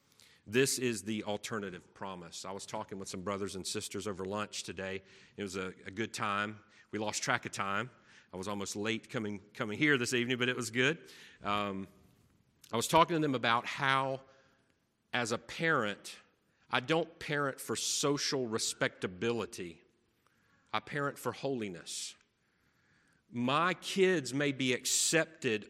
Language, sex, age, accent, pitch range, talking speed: English, male, 40-59, American, 105-140 Hz, 155 wpm